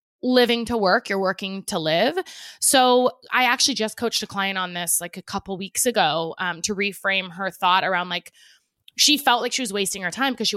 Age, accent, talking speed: 20-39, American, 215 wpm